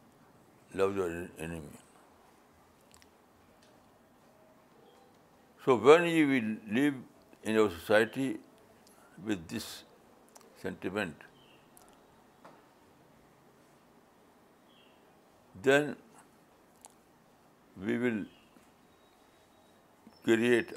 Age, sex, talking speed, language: 60-79, male, 50 wpm, Urdu